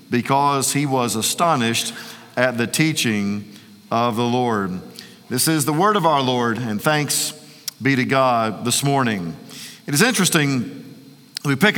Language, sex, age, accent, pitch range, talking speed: English, male, 50-69, American, 140-195 Hz, 150 wpm